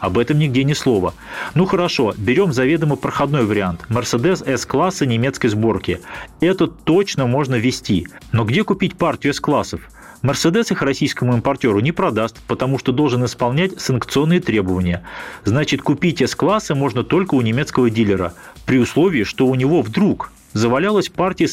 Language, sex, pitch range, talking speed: Russian, male, 125-165 Hz, 145 wpm